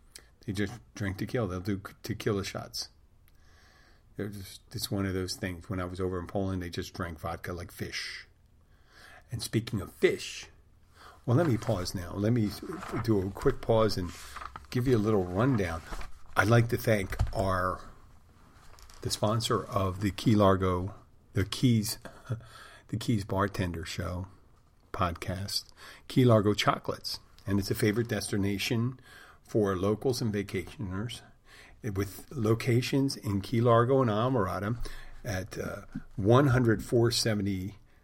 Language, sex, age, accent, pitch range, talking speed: English, male, 50-69, American, 95-115 Hz, 140 wpm